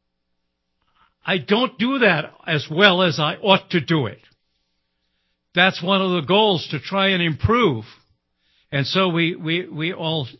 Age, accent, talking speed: 60-79, American, 155 wpm